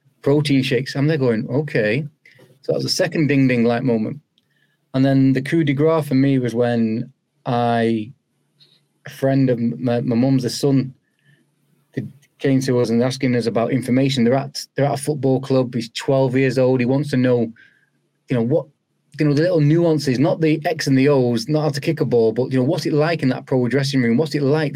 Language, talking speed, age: English, 215 wpm, 30-49